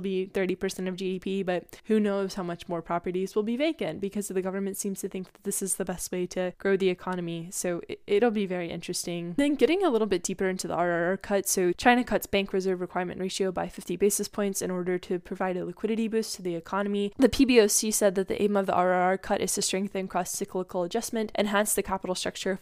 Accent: American